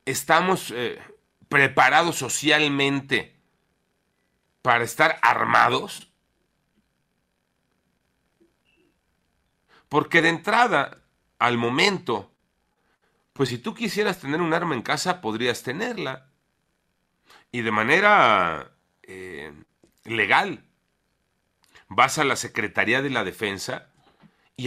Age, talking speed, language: 40-59, 90 wpm, Spanish